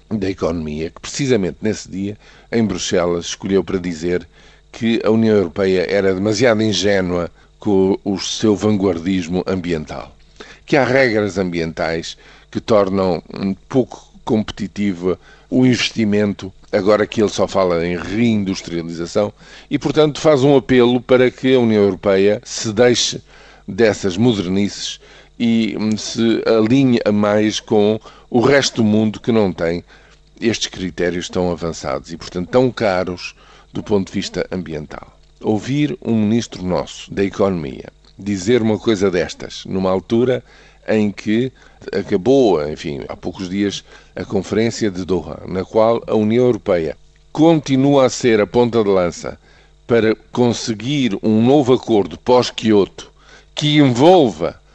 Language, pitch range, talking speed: Portuguese, 95-115 Hz, 135 wpm